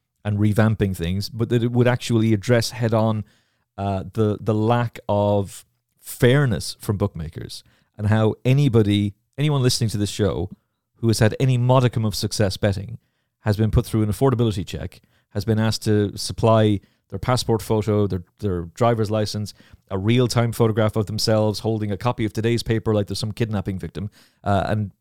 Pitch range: 105-125 Hz